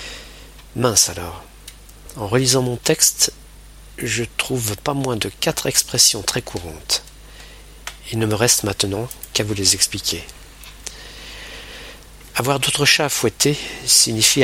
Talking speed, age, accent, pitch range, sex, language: 125 wpm, 50-69, French, 100-130 Hz, male, French